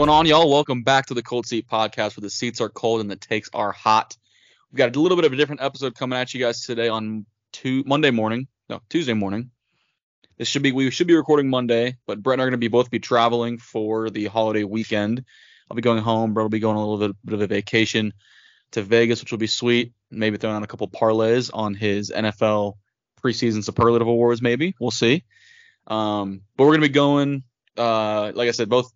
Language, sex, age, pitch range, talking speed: English, male, 20-39, 110-125 Hz, 230 wpm